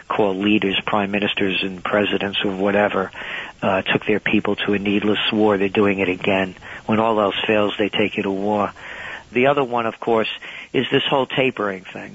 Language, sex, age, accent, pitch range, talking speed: English, male, 50-69, American, 100-120 Hz, 195 wpm